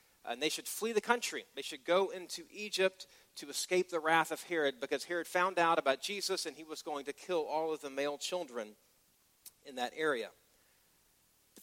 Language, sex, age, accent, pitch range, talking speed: English, male, 40-59, American, 150-195 Hz, 195 wpm